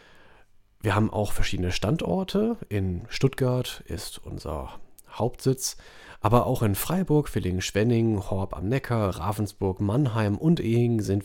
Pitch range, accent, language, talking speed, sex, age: 95-120 Hz, German, German, 125 wpm, male, 40-59